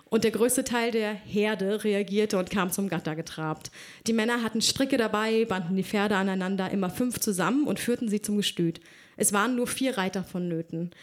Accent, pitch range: German, 195-240 Hz